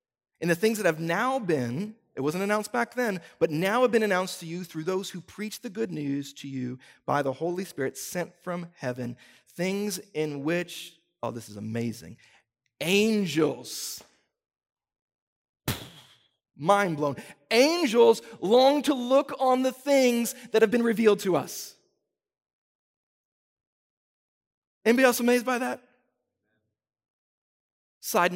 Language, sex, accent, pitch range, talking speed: English, male, American, 130-200 Hz, 135 wpm